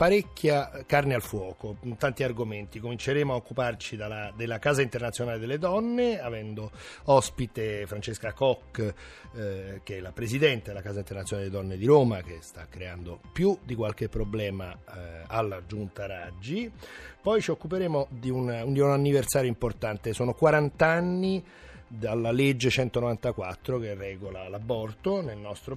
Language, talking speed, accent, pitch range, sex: Italian, 140 wpm, native, 105-145 Hz, male